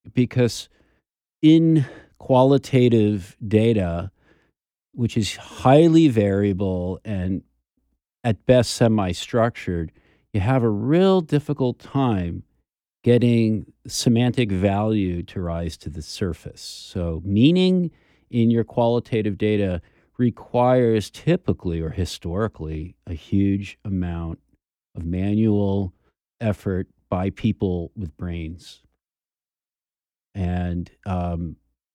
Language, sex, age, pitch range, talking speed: English, male, 50-69, 90-120 Hz, 90 wpm